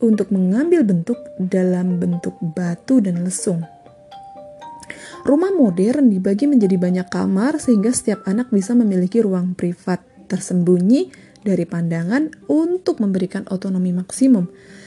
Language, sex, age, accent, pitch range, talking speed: Indonesian, female, 30-49, native, 185-255 Hz, 115 wpm